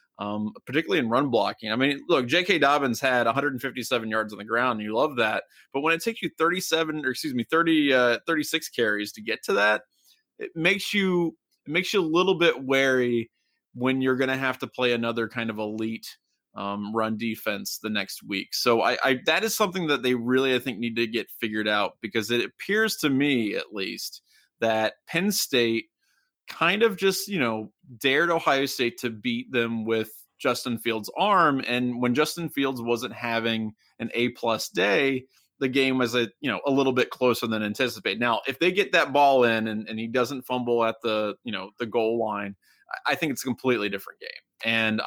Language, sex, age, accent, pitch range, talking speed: English, male, 20-39, American, 110-140 Hz, 200 wpm